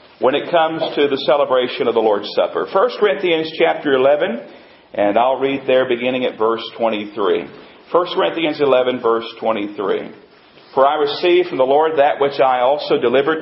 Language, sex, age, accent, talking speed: English, male, 40-59, American, 170 wpm